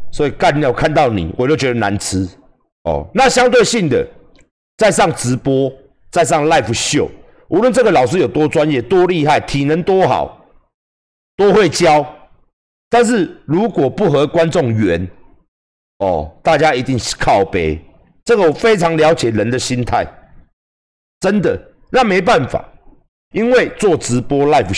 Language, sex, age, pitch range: Chinese, male, 50-69, 115-160 Hz